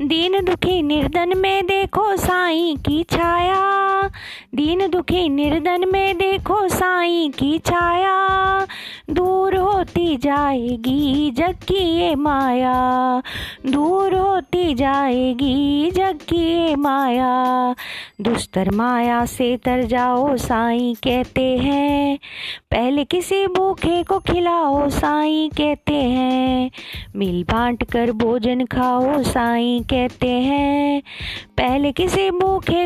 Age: 20-39